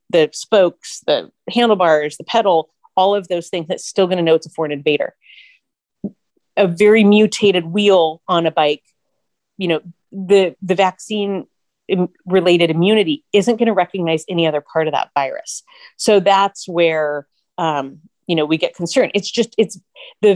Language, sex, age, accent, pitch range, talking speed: English, female, 30-49, American, 165-215 Hz, 165 wpm